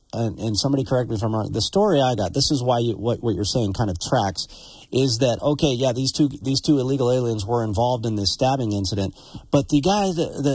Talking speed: 245 wpm